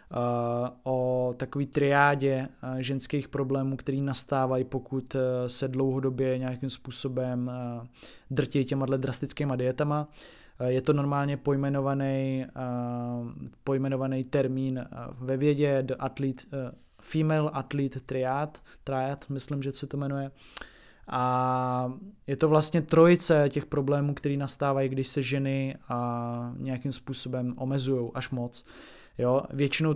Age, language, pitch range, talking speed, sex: 20-39, Czech, 130-145 Hz, 105 wpm, male